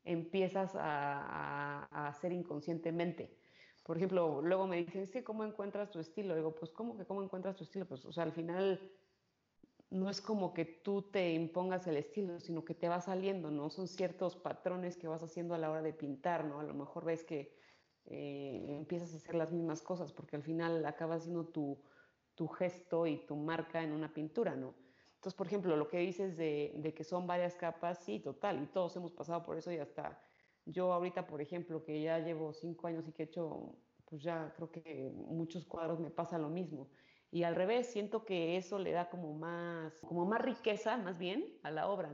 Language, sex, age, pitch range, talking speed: Spanish, female, 30-49, 160-185 Hz, 210 wpm